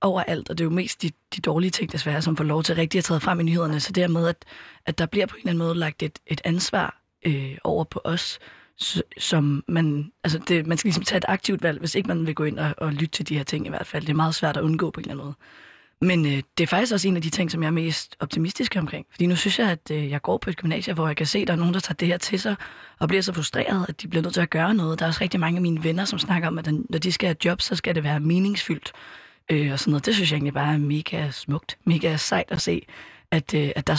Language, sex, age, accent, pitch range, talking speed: Danish, female, 20-39, native, 150-180 Hz, 300 wpm